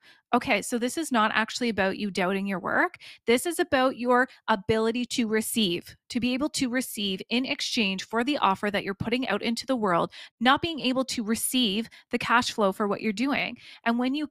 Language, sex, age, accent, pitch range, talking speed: English, female, 20-39, American, 210-245 Hz, 210 wpm